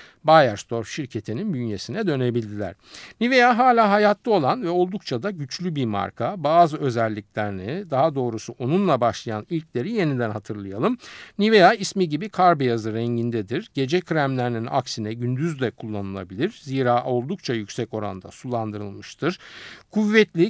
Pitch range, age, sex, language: 115-185 Hz, 50-69, male, Turkish